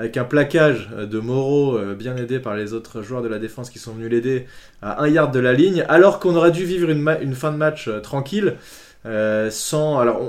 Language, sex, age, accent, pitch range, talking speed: French, male, 20-39, French, 120-175 Hz, 225 wpm